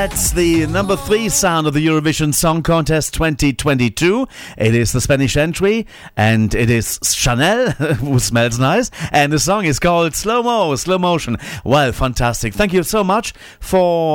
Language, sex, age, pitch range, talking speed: English, male, 40-59, 115-155 Hz, 165 wpm